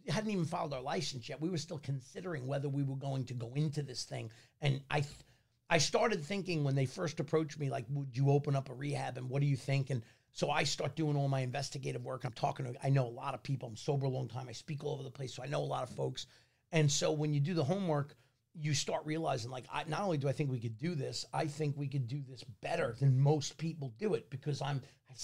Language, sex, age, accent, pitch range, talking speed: English, male, 40-59, American, 135-170 Hz, 275 wpm